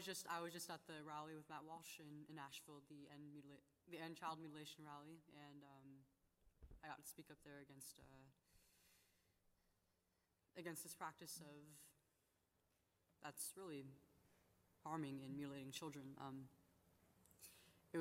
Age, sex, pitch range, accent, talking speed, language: 20-39, female, 135-165 Hz, American, 145 wpm, English